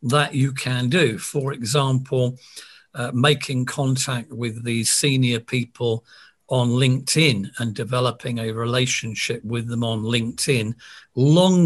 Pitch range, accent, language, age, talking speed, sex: 125-155 Hz, British, English, 50-69, 125 wpm, male